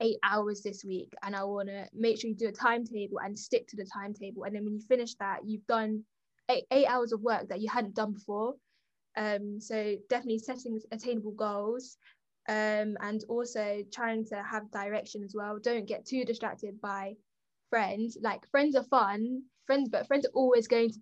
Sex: female